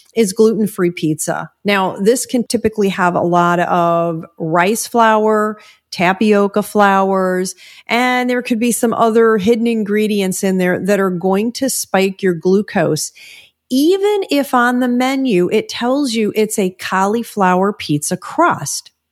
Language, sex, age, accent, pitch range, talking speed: English, female, 40-59, American, 185-240 Hz, 140 wpm